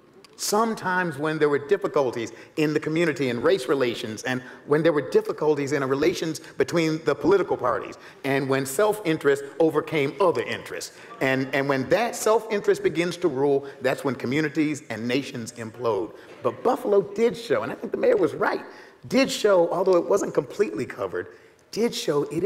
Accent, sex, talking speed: American, male, 170 wpm